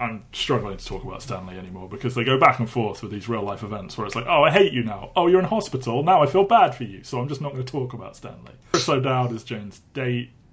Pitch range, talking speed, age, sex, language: 105-125 Hz, 280 wpm, 20-39, male, English